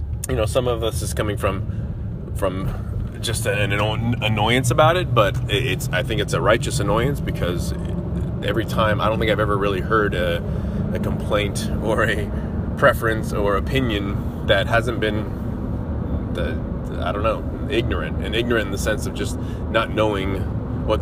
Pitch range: 95-120 Hz